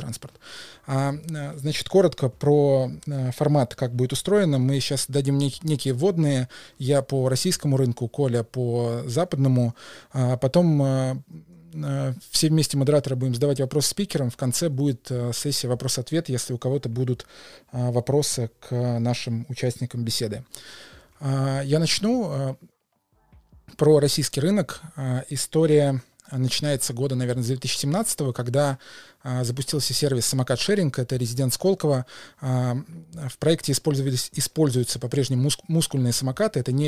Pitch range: 125-150 Hz